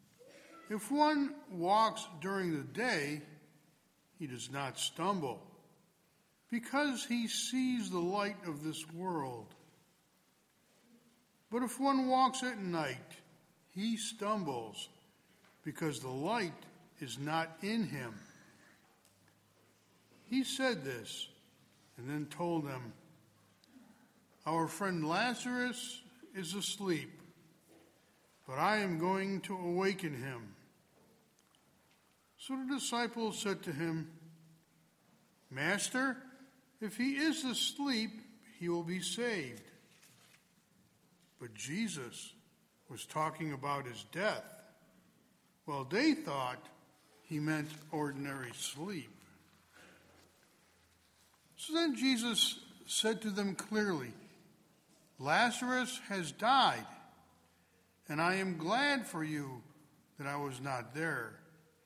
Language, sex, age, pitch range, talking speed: English, male, 60-79, 150-230 Hz, 100 wpm